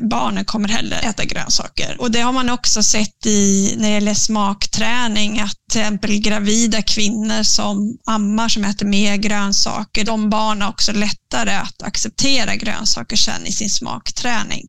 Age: 30-49